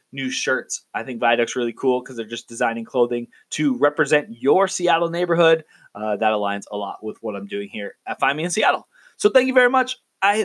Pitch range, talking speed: 120-170 Hz, 220 wpm